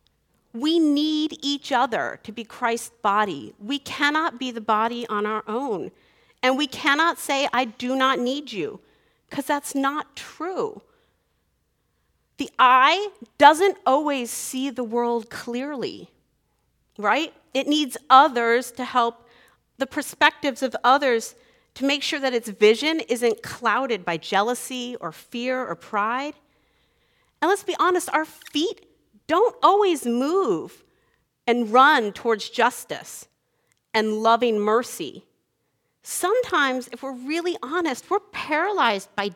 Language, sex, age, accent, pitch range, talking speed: English, female, 40-59, American, 235-300 Hz, 130 wpm